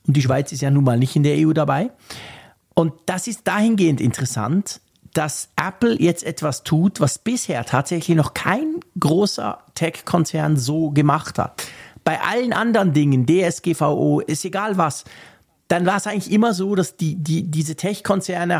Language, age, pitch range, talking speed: German, 50-69, 140-185 Hz, 165 wpm